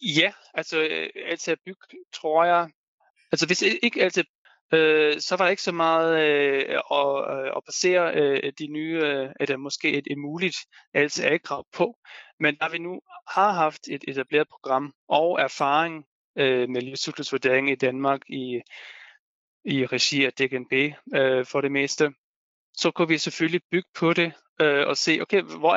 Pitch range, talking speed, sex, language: 135-165 Hz, 165 wpm, male, Danish